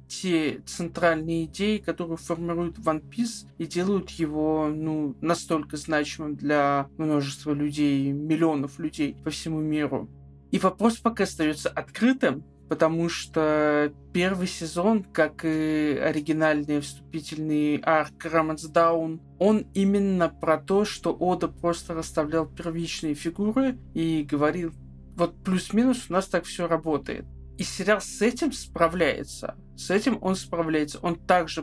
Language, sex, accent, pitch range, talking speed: Russian, male, native, 155-180 Hz, 125 wpm